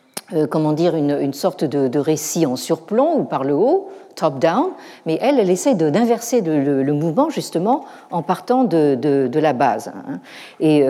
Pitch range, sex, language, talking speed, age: 135-180 Hz, female, French, 185 wpm, 50-69